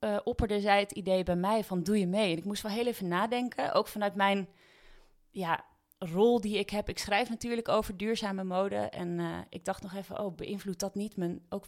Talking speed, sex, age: 215 wpm, female, 30-49